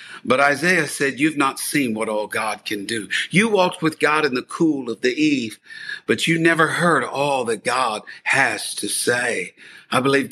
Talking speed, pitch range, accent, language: 190 wpm, 140-200 Hz, American, English